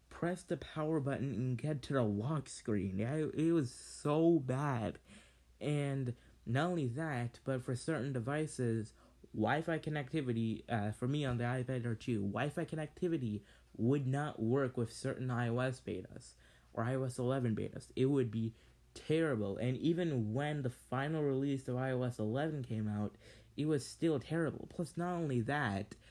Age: 20-39